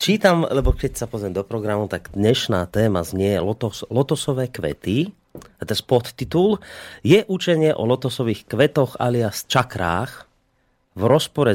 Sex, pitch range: male, 100-130 Hz